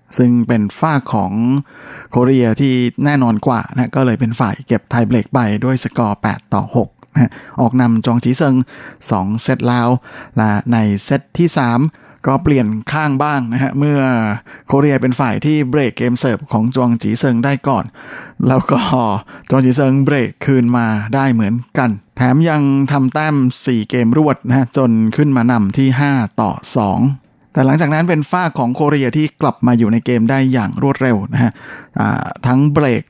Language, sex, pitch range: Thai, male, 115-140 Hz